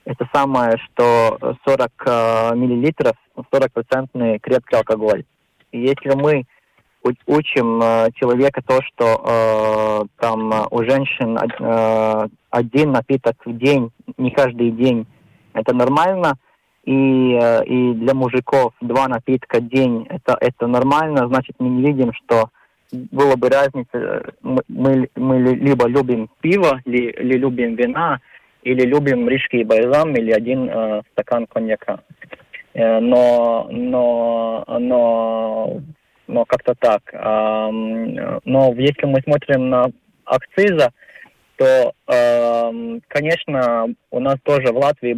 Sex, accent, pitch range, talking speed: male, native, 115-135 Hz, 115 wpm